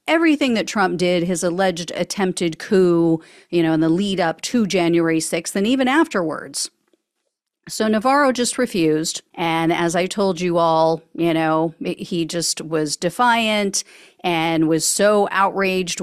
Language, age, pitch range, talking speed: English, 40-59, 170-245 Hz, 150 wpm